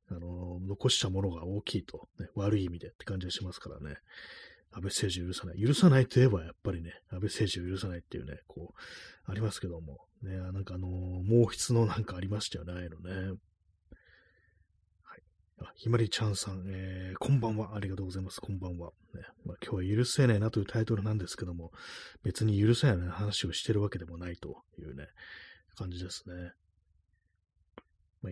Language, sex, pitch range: Japanese, male, 90-110 Hz